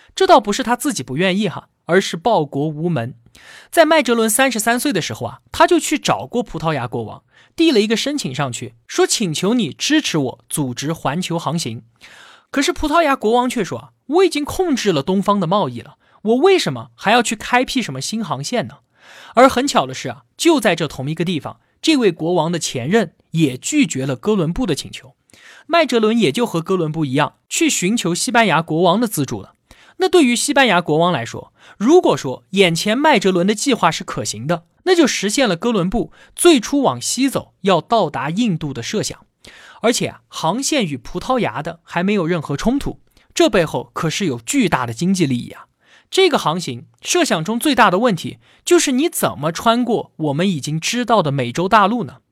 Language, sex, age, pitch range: Chinese, male, 20-39, 155-255 Hz